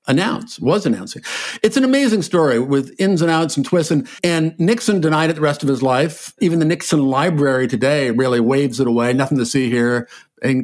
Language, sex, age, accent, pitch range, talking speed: English, male, 50-69, American, 135-170 Hz, 210 wpm